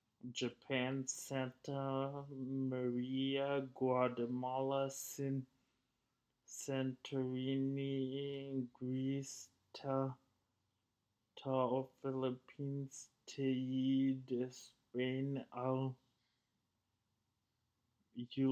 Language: English